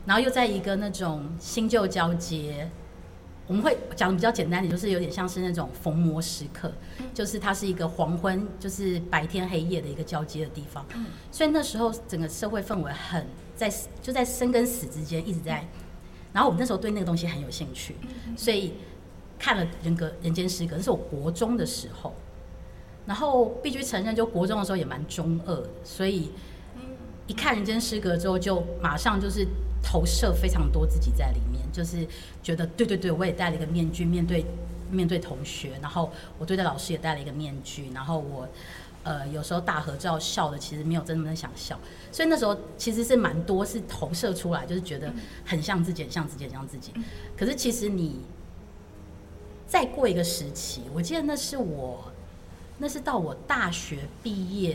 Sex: female